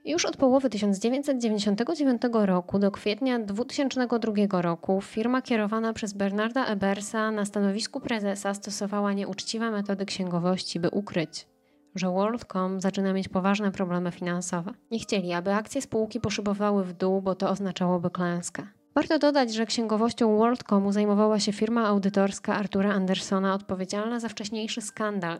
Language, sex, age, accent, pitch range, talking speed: Polish, female, 10-29, native, 190-225 Hz, 135 wpm